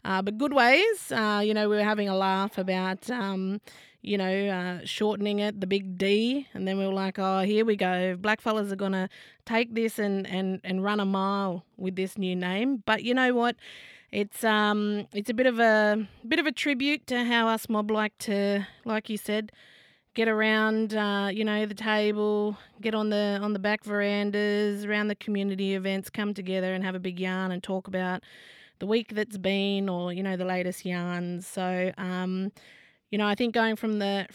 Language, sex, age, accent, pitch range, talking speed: English, female, 20-39, Australian, 190-220 Hz, 205 wpm